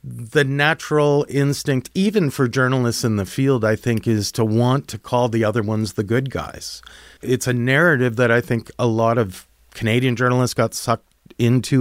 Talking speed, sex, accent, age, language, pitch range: 185 wpm, male, American, 40-59, English, 105-130 Hz